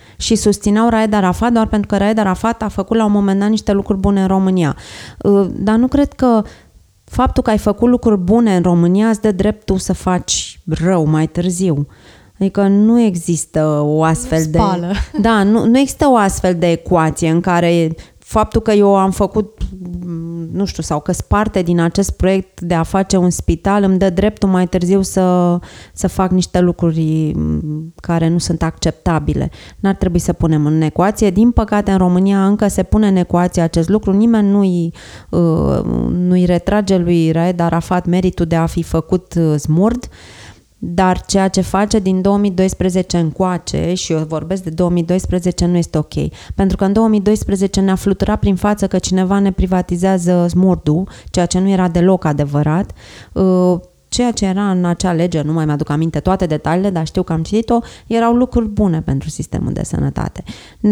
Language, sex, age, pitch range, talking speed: Romanian, female, 20-39, 170-210 Hz, 175 wpm